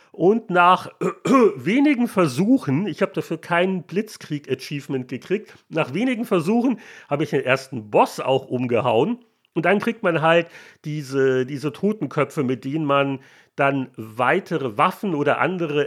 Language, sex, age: German, male, 40-59